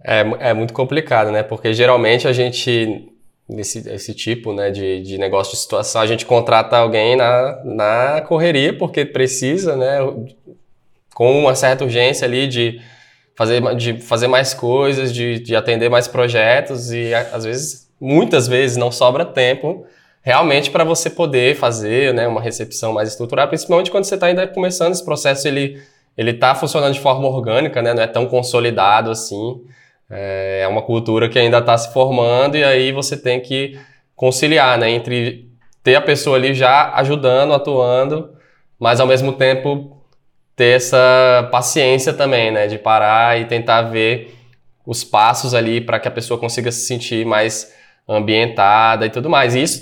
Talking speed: 165 wpm